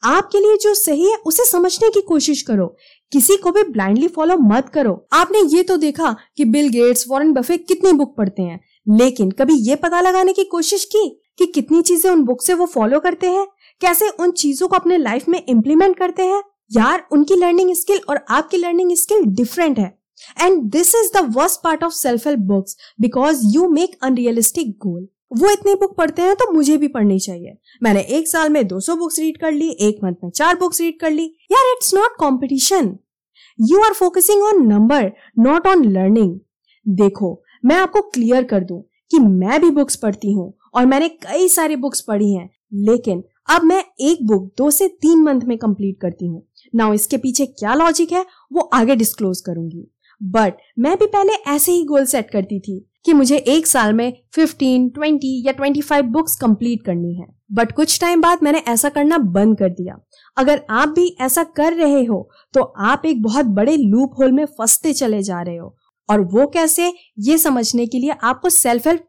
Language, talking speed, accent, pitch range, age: Hindi, 185 wpm, native, 220-345 Hz, 20-39